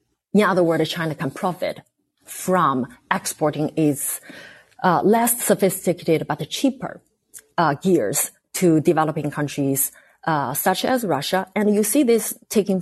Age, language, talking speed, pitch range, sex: 30-49, English, 130 wpm, 155-200 Hz, female